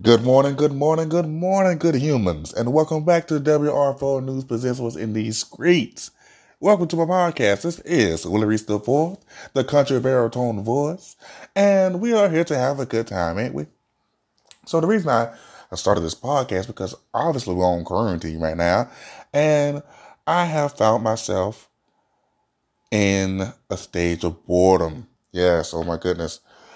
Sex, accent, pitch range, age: male, American, 95-155 Hz, 20-39